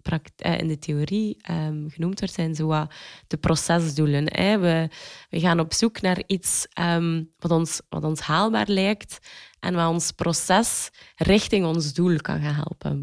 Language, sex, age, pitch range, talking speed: Dutch, female, 20-39, 160-195 Hz, 160 wpm